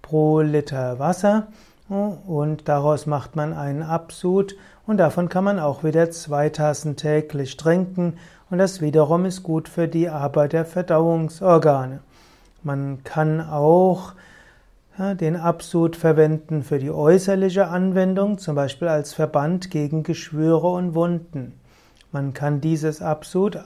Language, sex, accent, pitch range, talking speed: German, male, German, 150-175 Hz, 125 wpm